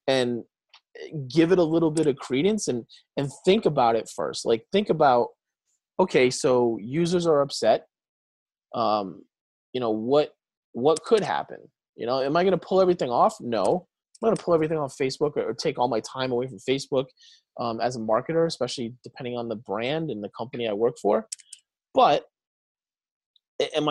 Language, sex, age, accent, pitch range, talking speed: English, male, 20-39, American, 125-180 Hz, 180 wpm